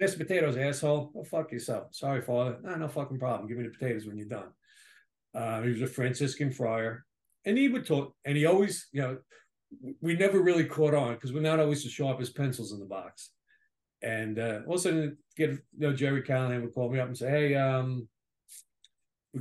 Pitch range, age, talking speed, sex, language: 120-155 Hz, 50-69, 215 wpm, male, English